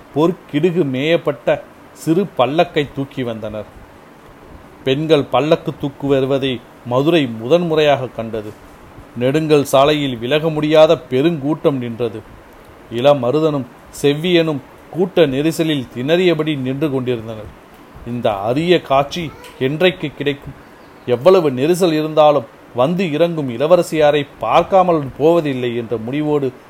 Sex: male